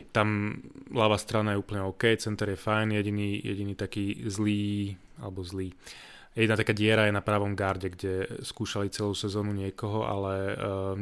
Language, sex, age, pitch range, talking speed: Slovak, male, 20-39, 100-115 Hz, 160 wpm